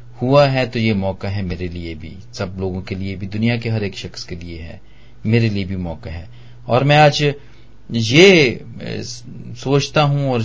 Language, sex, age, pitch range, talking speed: Hindi, male, 40-59, 100-120 Hz, 195 wpm